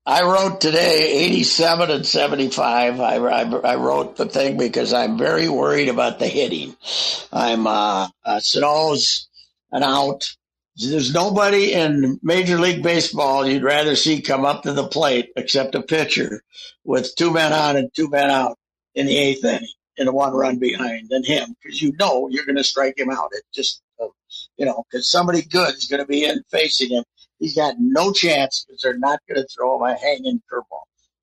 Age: 60-79